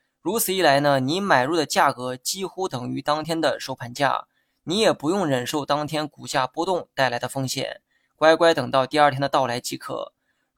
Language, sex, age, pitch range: Chinese, male, 20-39, 130-155 Hz